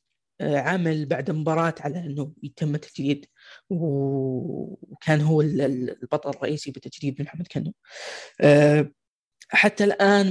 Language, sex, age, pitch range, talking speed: Arabic, female, 20-39, 145-165 Hz, 100 wpm